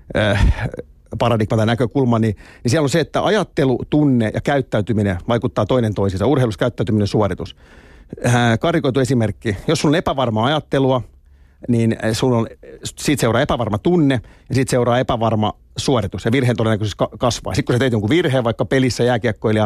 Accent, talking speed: native, 160 wpm